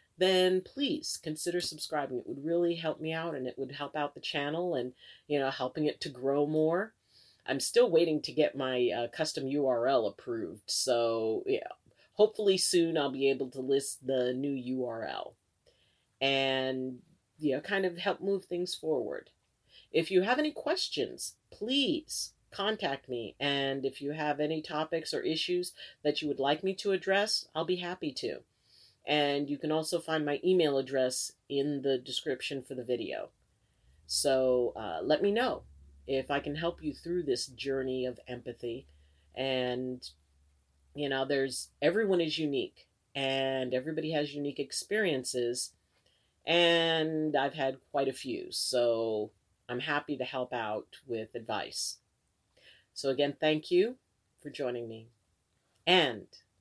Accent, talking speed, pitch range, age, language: American, 155 wpm, 130-165 Hz, 40-59, English